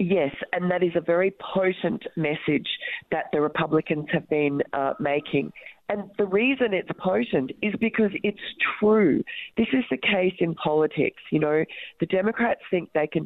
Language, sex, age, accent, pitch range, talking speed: English, female, 40-59, Australian, 135-180 Hz, 170 wpm